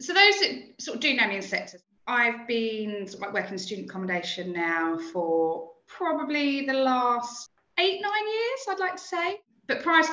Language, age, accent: English, 20-39, British